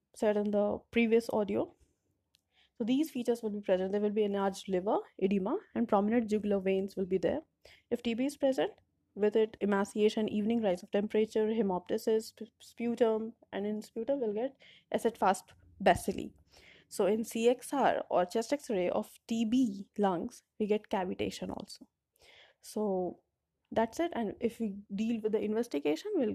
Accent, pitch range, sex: Indian, 210-255 Hz, female